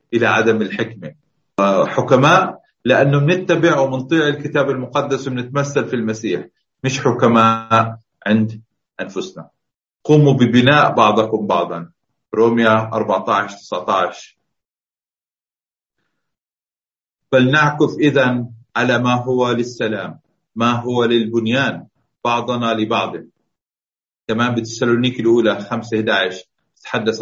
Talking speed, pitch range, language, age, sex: 85 wpm, 110-130 Hz, Arabic, 40-59, male